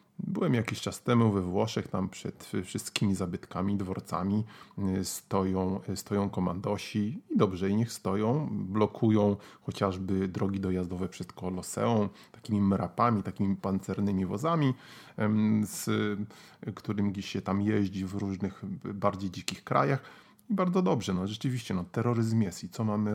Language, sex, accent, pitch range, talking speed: Polish, male, native, 95-120 Hz, 135 wpm